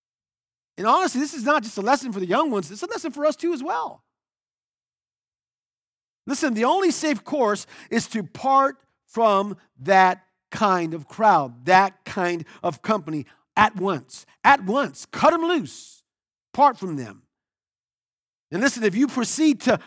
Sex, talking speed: male, 160 wpm